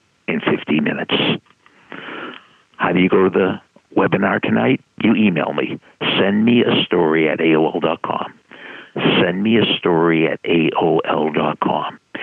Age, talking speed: 60-79, 130 wpm